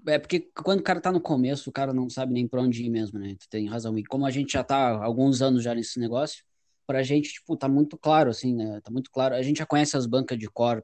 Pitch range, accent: 120-145 Hz, Brazilian